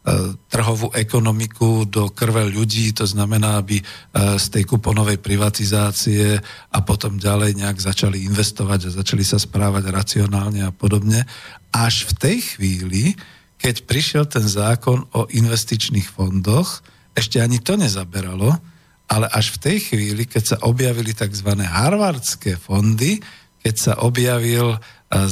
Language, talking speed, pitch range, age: Slovak, 130 wpm, 100-120 Hz, 50-69